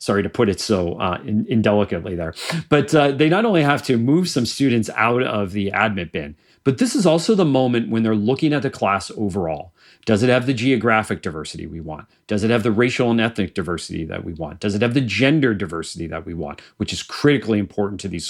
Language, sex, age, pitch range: English, male, 40-59, 95-130 Hz